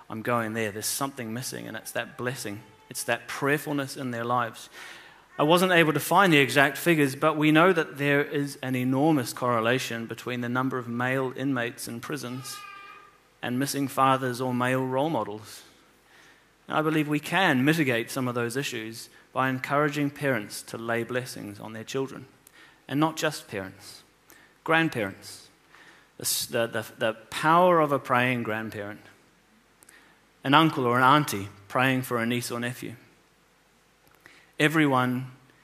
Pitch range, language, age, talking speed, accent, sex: 115-150 Hz, English, 30-49, 155 wpm, British, male